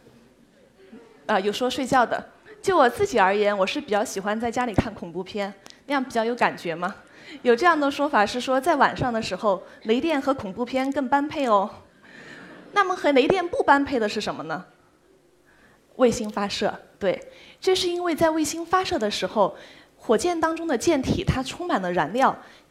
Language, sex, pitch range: Chinese, female, 210-315 Hz